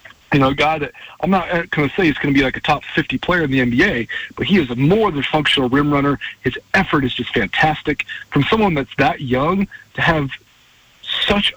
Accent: American